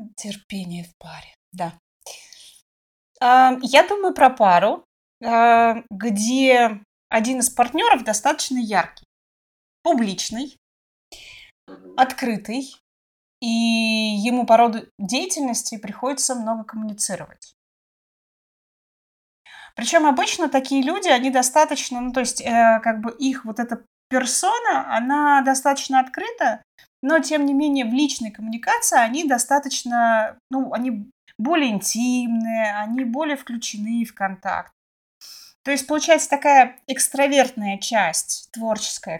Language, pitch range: Russian, 215-275 Hz